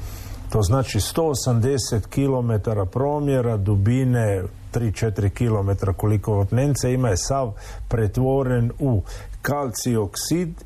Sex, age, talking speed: male, 50-69, 95 wpm